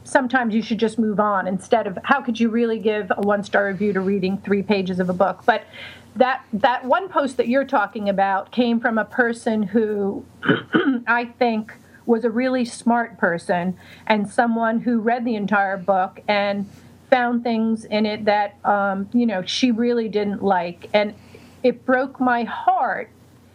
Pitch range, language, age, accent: 195-240 Hz, English, 40-59, American